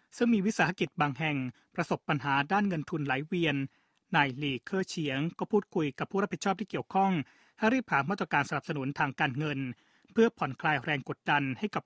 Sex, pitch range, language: male, 145-185 Hz, Thai